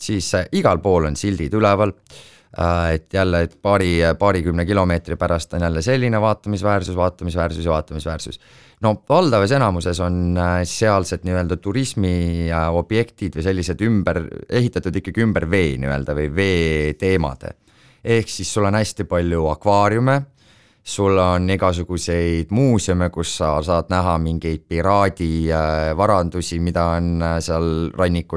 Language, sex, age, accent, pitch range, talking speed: English, male, 30-49, Finnish, 85-105 Hz, 125 wpm